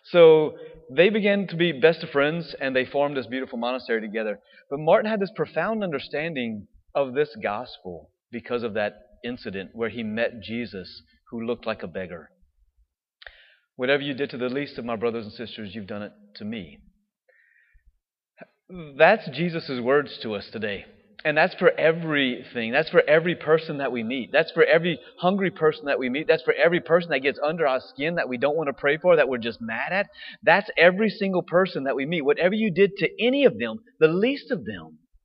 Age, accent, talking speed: 30-49, American, 200 wpm